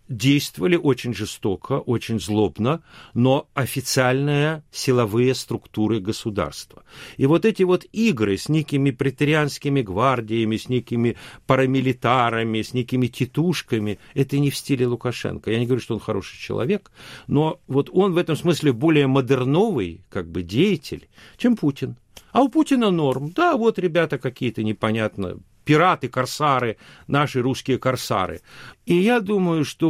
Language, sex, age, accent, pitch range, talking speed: Russian, male, 50-69, native, 115-160 Hz, 135 wpm